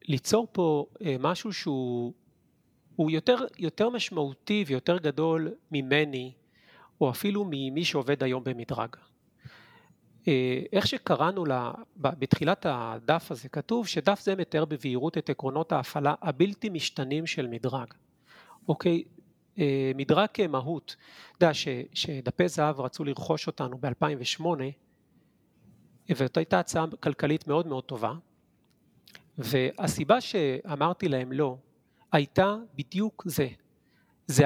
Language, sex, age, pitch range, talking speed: Hebrew, male, 40-59, 135-175 Hz, 105 wpm